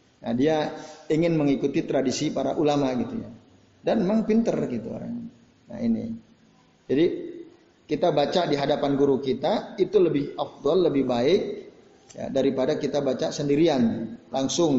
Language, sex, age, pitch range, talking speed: Indonesian, male, 30-49, 135-195 Hz, 140 wpm